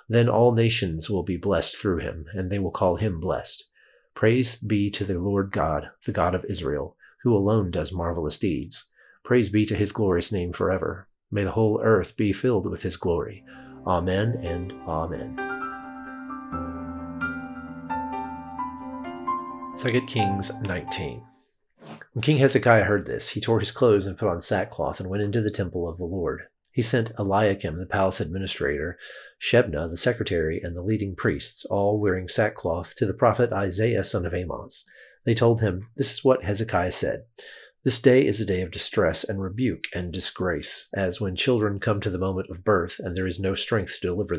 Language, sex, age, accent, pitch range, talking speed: English, male, 40-59, American, 90-115 Hz, 175 wpm